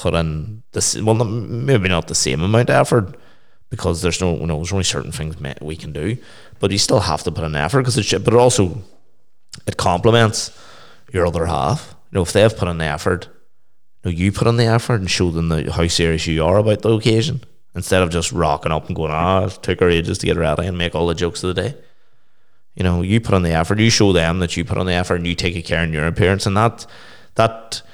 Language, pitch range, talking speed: English, 85-105 Hz, 255 wpm